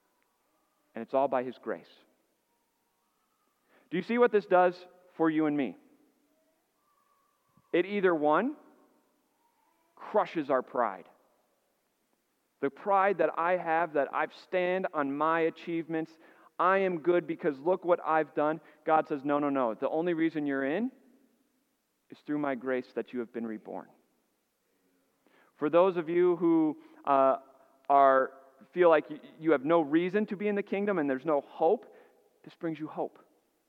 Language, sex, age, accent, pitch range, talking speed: English, male, 40-59, American, 130-180 Hz, 155 wpm